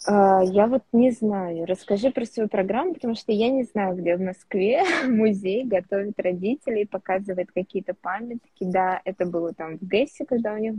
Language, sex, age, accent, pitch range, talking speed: Russian, female, 20-39, native, 180-215 Hz, 170 wpm